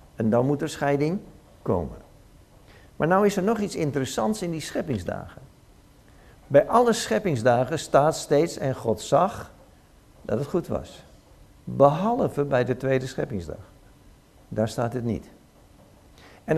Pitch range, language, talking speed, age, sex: 130-175 Hz, Dutch, 140 wpm, 60-79, male